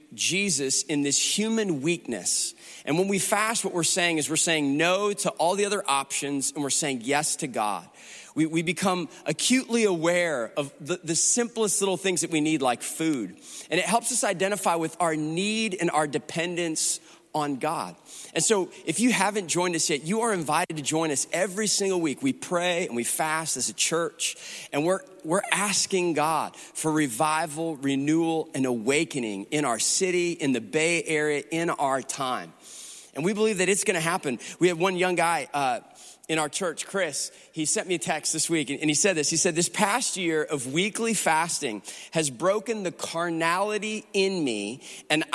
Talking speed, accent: 190 wpm, American